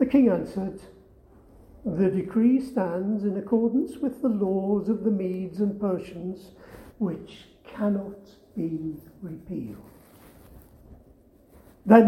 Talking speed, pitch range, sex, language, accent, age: 105 wpm, 190-255 Hz, male, English, British, 50-69